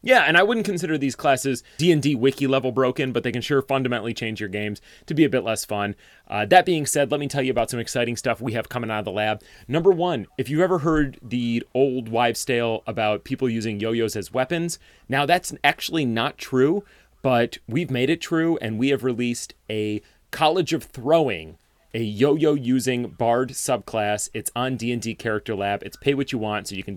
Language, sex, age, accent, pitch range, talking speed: English, male, 30-49, American, 110-140 Hz, 205 wpm